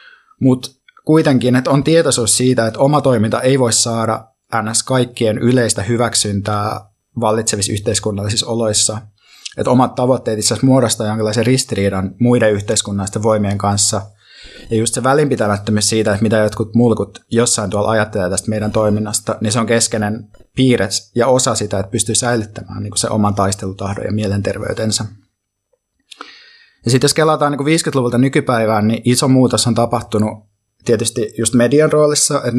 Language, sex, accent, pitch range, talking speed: Finnish, male, native, 105-130 Hz, 145 wpm